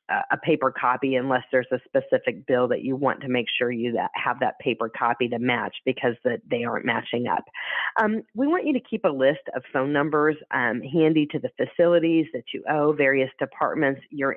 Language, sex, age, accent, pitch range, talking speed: English, female, 40-59, American, 135-170 Hz, 200 wpm